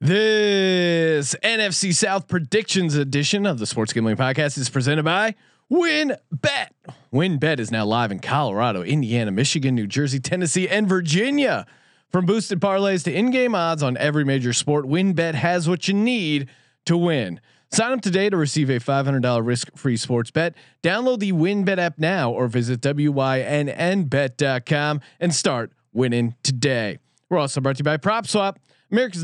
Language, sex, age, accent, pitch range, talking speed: English, male, 30-49, American, 135-180 Hz, 155 wpm